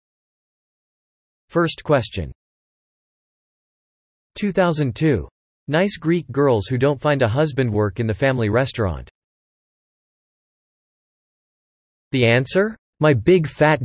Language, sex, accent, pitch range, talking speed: English, male, American, 95-160 Hz, 90 wpm